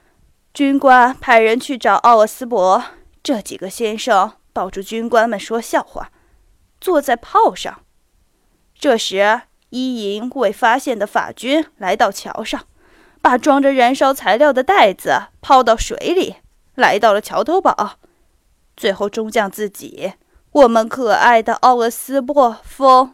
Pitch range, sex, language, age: 215-275 Hz, female, Chinese, 20-39